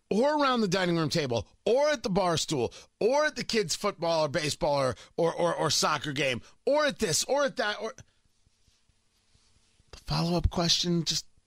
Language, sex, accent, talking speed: English, male, American, 185 wpm